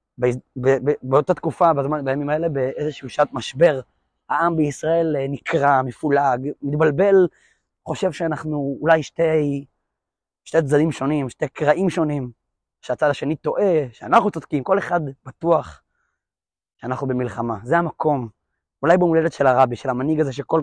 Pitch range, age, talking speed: 135-170 Hz, 20-39, 120 wpm